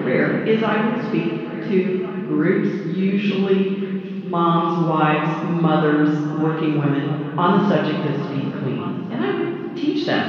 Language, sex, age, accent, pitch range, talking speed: English, female, 50-69, American, 150-195 Hz, 135 wpm